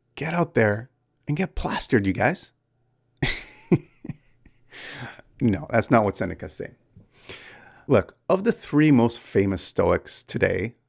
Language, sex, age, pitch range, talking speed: English, male, 30-49, 110-155 Hz, 125 wpm